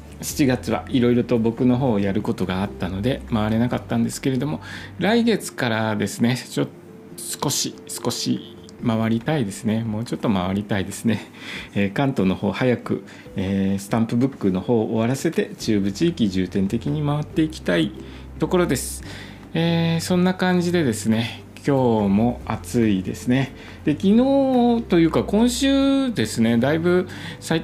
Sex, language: male, Japanese